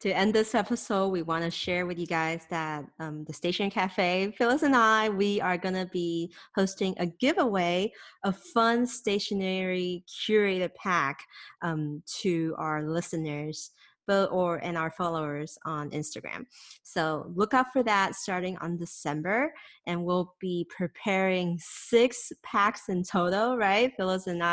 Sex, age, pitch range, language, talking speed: female, 30-49, 165-200 Hz, English, 150 wpm